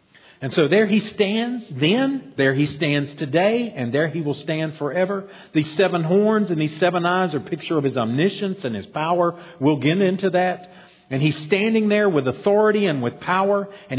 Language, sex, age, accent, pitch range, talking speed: English, male, 50-69, American, 135-195 Hz, 195 wpm